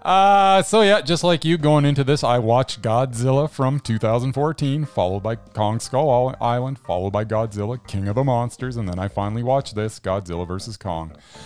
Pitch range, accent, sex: 110-155 Hz, American, male